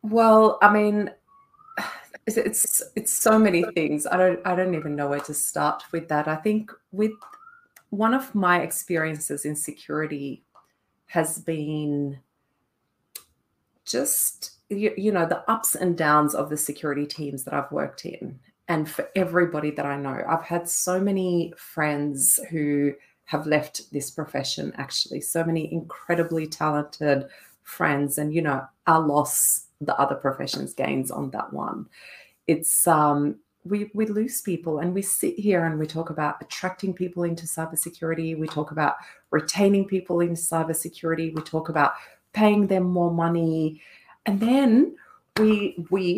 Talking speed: 150 wpm